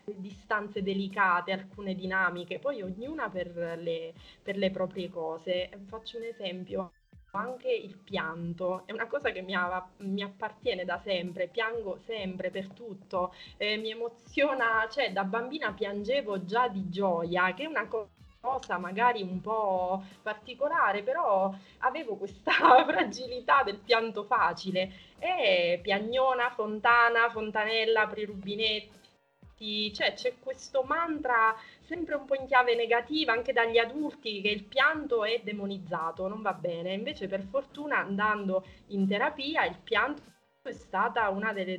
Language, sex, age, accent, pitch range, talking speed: Italian, female, 20-39, native, 190-235 Hz, 130 wpm